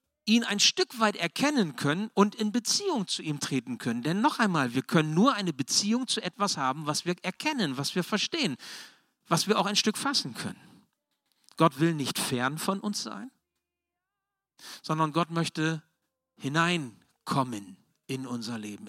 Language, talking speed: German, 160 wpm